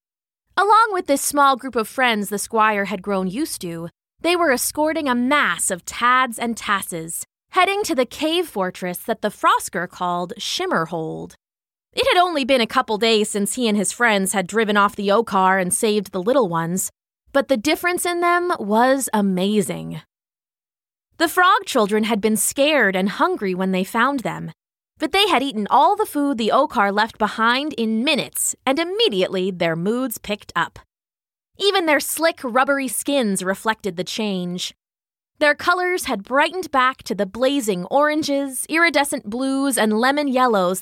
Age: 20-39